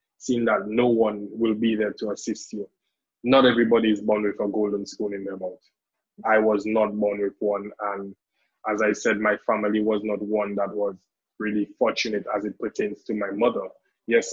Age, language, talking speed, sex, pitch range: 20-39, English, 195 wpm, male, 105-115 Hz